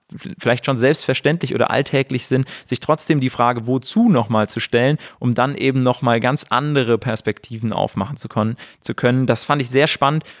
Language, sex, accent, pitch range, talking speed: German, male, German, 110-135 Hz, 180 wpm